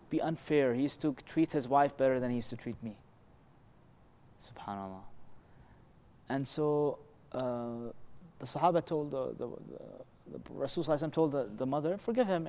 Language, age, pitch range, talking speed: English, 30-49, 125-170 Hz, 155 wpm